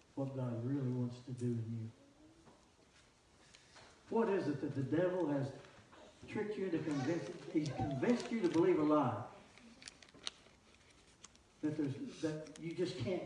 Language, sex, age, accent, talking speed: English, male, 60-79, American, 145 wpm